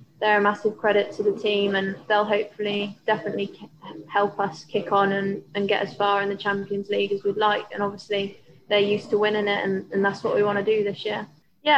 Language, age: English, 20-39